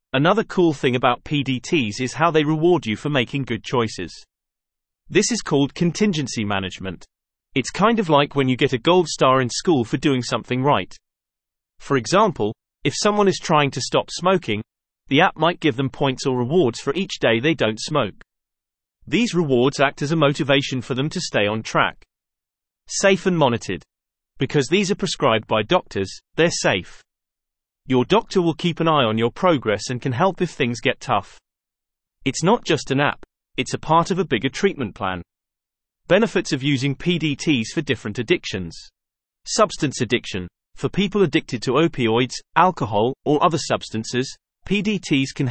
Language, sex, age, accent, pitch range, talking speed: English, male, 30-49, British, 120-165 Hz, 170 wpm